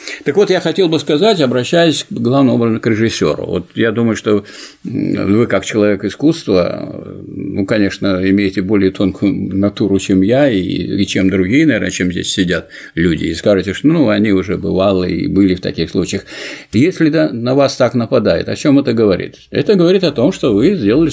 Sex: male